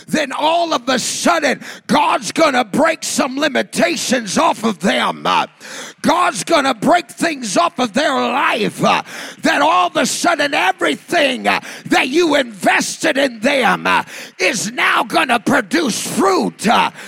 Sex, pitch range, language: male, 220-285 Hz, English